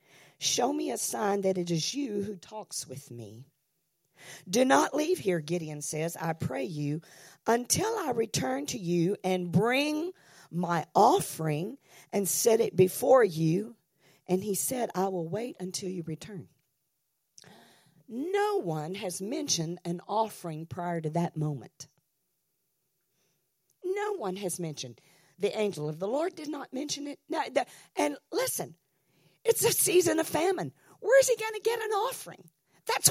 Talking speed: 150 wpm